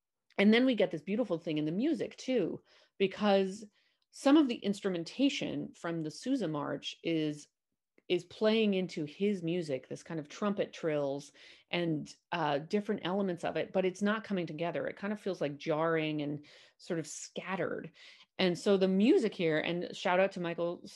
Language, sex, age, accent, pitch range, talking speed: English, female, 30-49, American, 155-205 Hz, 180 wpm